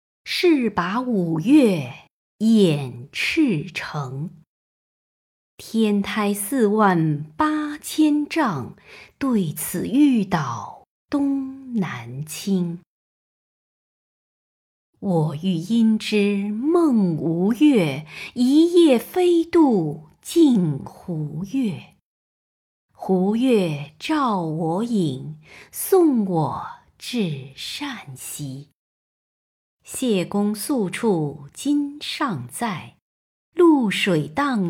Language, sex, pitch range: Chinese, female, 165-270 Hz